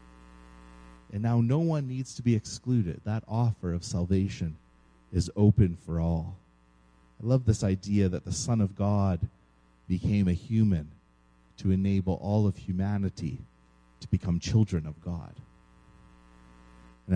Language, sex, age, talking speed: English, male, 30-49, 135 wpm